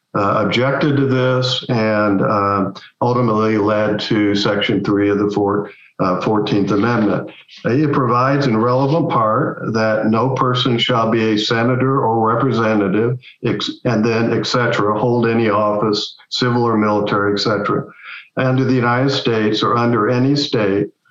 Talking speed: 150 wpm